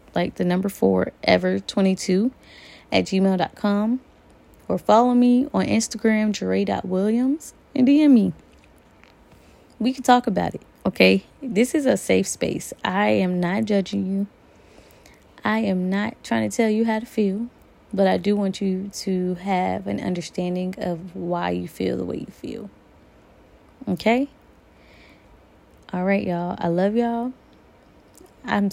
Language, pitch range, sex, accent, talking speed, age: English, 175-235 Hz, female, American, 140 wpm, 20-39